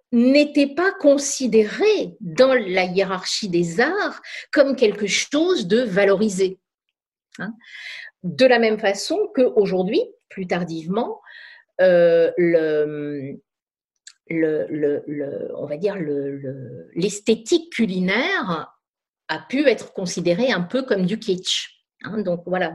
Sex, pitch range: female, 175-265 Hz